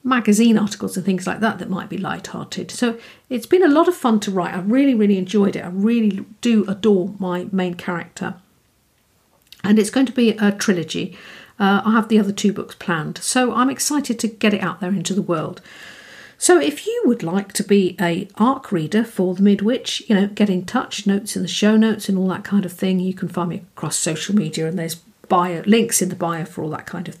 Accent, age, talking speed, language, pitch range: British, 50-69, 230 wpm, English, 185-230 Hz